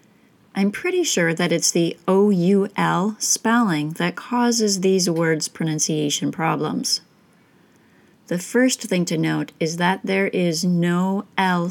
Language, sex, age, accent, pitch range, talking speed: English, female, 30-49, American, 165-220 Hz, 130 wpm